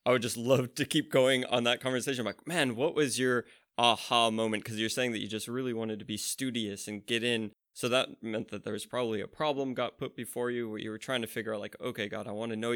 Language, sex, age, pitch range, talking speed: English, male, 20-39, 110-120 Hz, 280 wpm